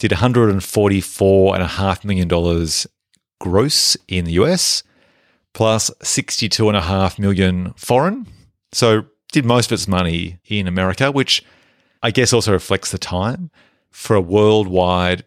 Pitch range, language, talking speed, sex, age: 90-125 Hz, English, 115 wpm, male, 40-59